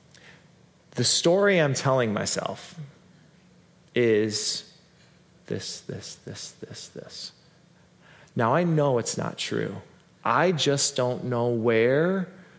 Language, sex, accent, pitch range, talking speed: English, male, American, 120-155 Hz, 105 wpm